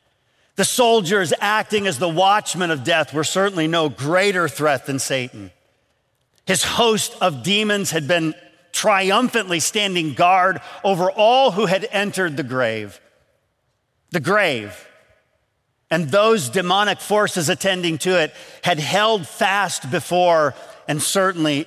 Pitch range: 155-210 Hz